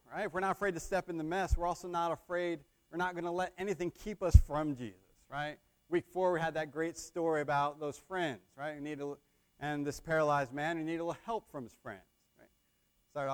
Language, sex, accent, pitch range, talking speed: English, male, American, 125-165 Hz, 230 wpm